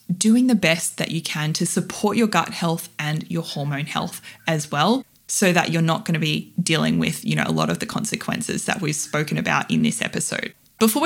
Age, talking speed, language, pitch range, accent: 20-39, 220 wpm, English, 165-220 Hz, Australian